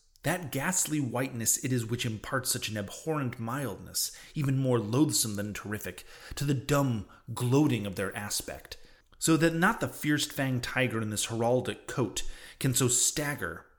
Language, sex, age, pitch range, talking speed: English, male, 30-49, 105-135 Hz, 160 wpm